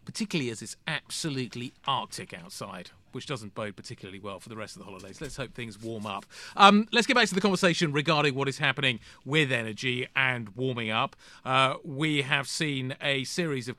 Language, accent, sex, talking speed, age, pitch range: English, British, male, 195 wpm, 30-49, 120-145 Hz